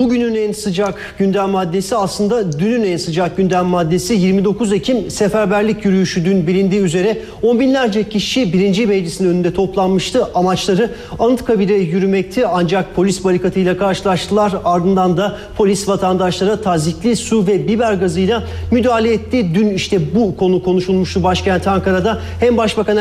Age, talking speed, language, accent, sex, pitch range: 40-59, 135 wpm, Turkish, native, male, 180-210 Hz